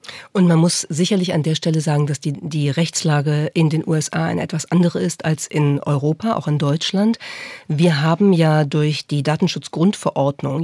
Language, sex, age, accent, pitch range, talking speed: German, female, 40-59, German, 150-180 Hz, 175 wpm